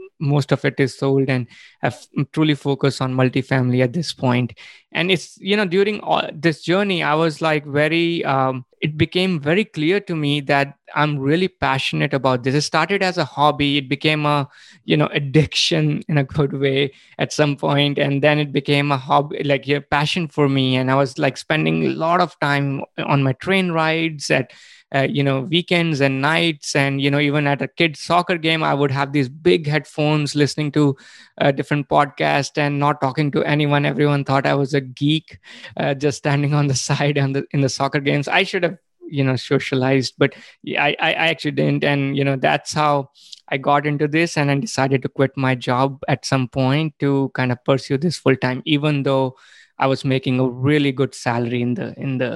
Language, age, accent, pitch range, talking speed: English, 20-39, Indian, 135-155 Hz, 205 wpm